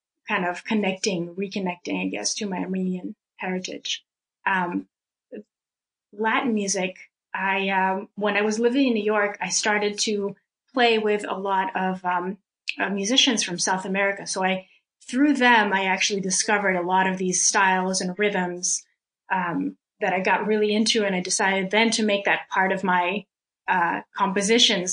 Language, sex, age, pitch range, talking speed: English, female, 30-49, 190-225 Hz, 165 wpm